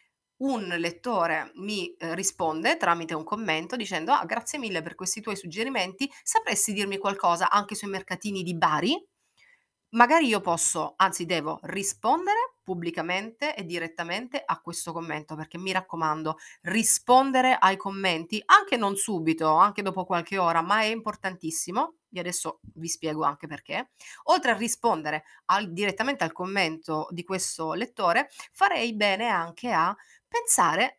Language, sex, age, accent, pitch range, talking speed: Italian, female, 30-49, native, 165-220 Hz, 135 wpm